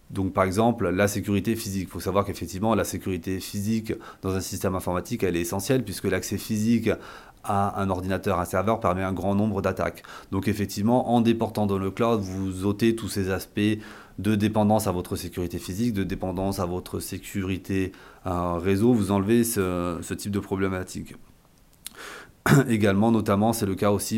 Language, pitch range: French, 95-110 Hz